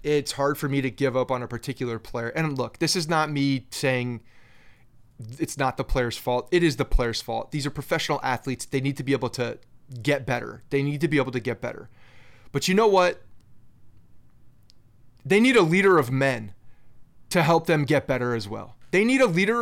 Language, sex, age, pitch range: English, male, 30-49, 120-150 Hz